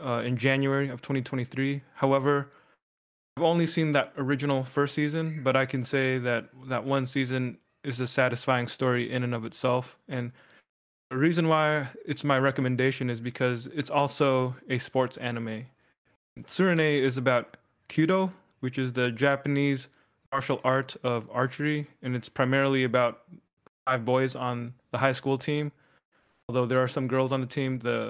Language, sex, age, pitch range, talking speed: English, male, 20-39, 125-140 Hz, 160 wpm